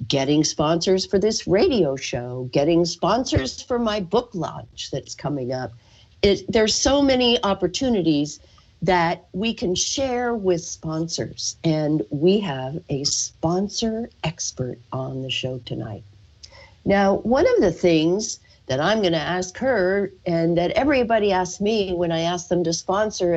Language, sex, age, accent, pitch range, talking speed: English, female, 50-69, American, 150-215 Hz, 145 wpm